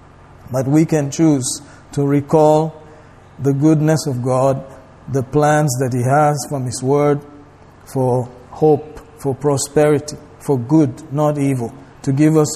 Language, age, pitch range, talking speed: English, 50-69, 130-150 Hz, 140 wpm